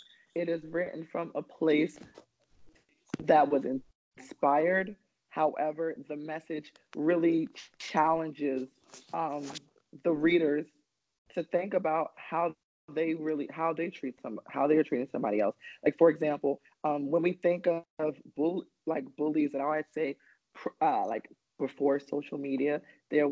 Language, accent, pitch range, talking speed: English, American, 145-165 Hz, 135 wpm